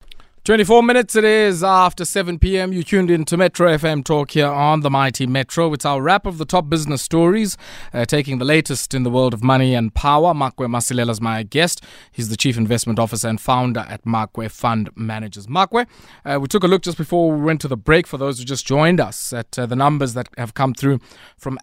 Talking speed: 230 wpm